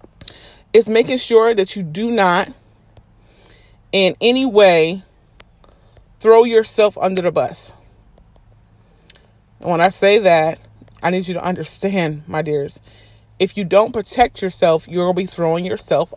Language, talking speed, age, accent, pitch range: English, 135 wpm, 30-49, American, 160-215 Hz